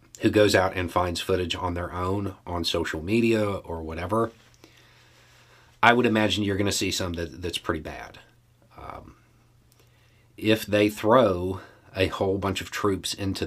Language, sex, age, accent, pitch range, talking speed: English, male, 40-59, American, 90-115 Hz, 155 wpm